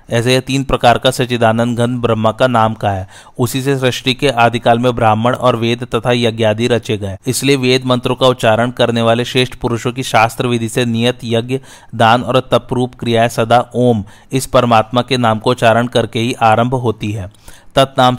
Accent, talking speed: native, 185 wpm